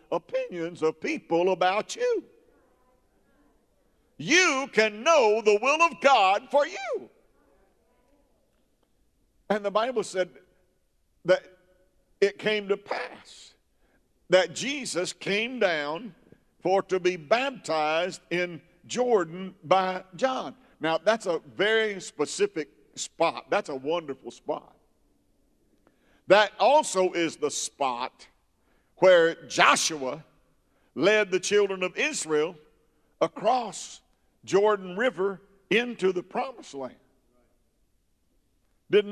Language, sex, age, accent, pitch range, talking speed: English, male, 50-69, American, 160-220 Hz, 100 wpm